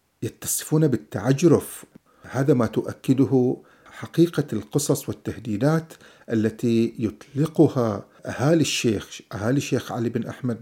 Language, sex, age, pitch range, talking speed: Arabic, male, 50-69, 110-135 Hz, 95 wpm